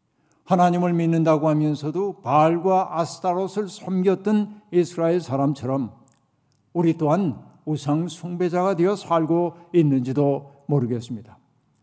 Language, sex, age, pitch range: Korean, male, 60-79, 145-185 Hz